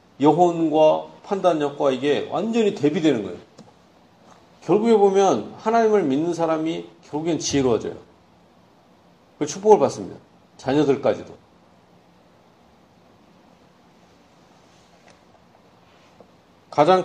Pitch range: 150-215 Hz